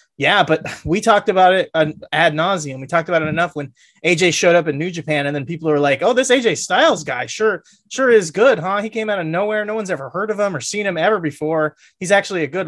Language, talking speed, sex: English, 260 wpm, male